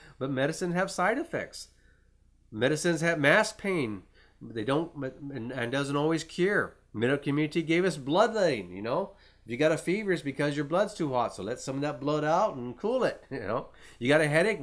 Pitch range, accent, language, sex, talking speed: 125-165 Hz, American, English, male, 205 wpm